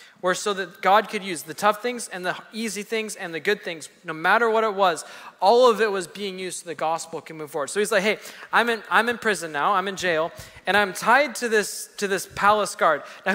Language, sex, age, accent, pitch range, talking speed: English, male, 20-39, American, 185-215 Hz, 255 wpm